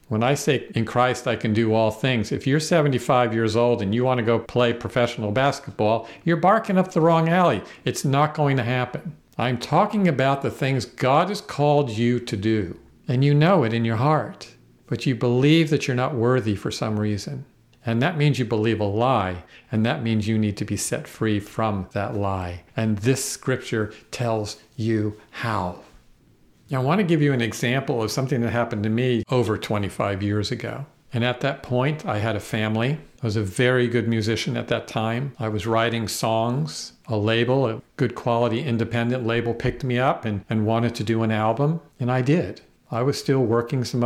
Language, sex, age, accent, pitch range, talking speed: English, male, 50-69, American, 110-140 Hz, 205 wpm